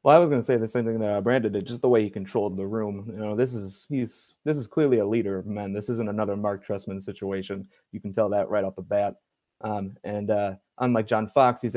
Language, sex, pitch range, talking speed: English, male, 105-120 Hz, 265 wpm